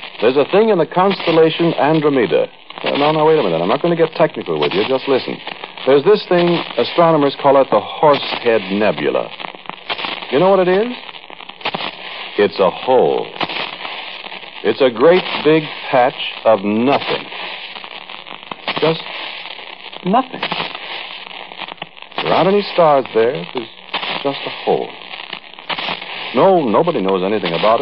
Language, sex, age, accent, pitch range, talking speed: English, male, 60-79, American, 150-225 Hz, 135 wpm